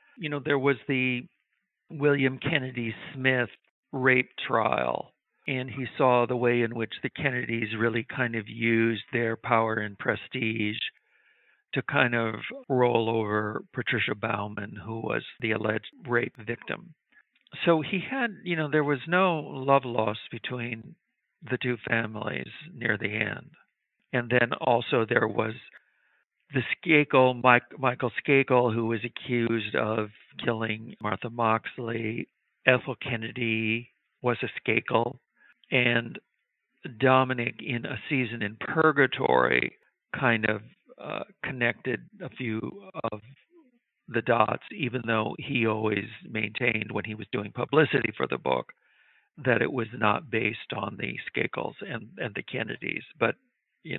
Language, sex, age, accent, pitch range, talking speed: English, male, 60-79, American, 110-135 Hz, 135 wpm